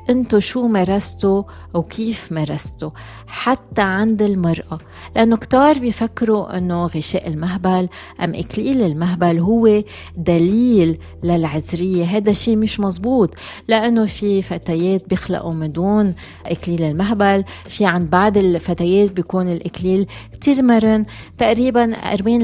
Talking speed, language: 110 wpm, Arabic